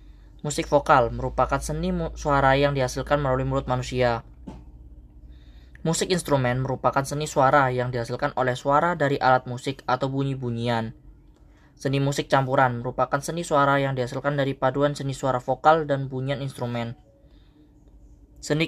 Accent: native